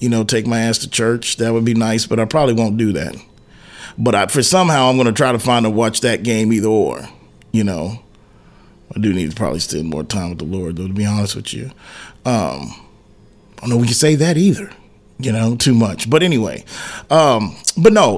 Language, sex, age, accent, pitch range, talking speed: English, male, 30-49, American, 110-135 Hz, 230 wpm